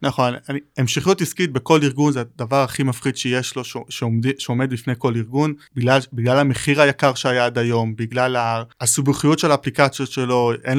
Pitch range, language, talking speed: 120-145 Hz, Hebrew, 185 wpm